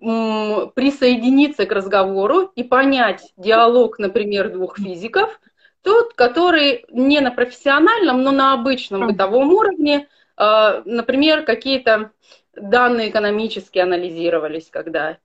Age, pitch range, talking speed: 30-49, 210-275 Hz, 100 wpm